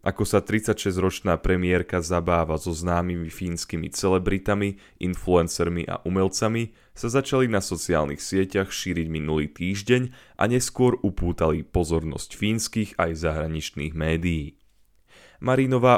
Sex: male